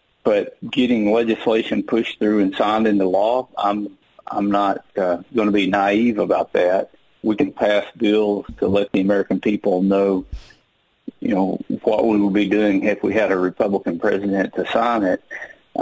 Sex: male